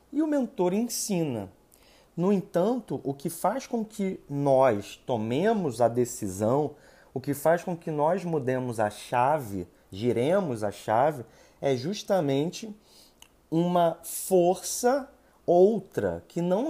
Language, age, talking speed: Portuguese, 30-49, 120 wpm